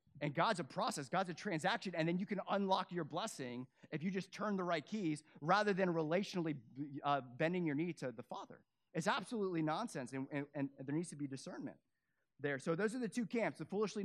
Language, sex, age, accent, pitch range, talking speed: English, male, 30-49, American, 140-195 Hz, 220 wpm